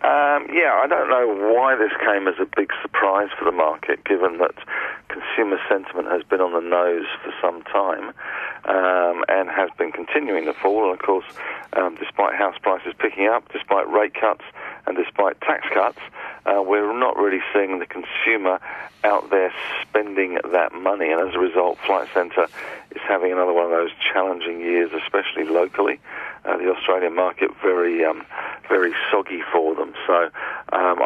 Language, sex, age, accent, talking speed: English, male, 50-69, British, 175 wpm